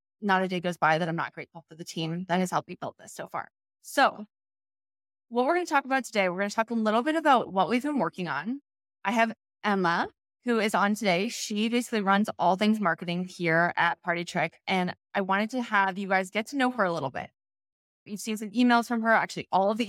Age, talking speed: 20-39, 245 wpm